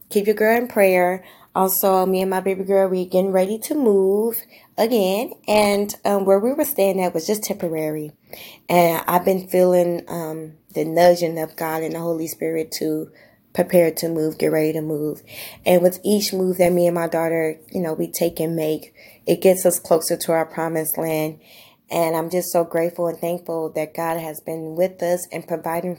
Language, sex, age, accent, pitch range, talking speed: English, female, 20-39, American, 160-185 Hz, 200 wpm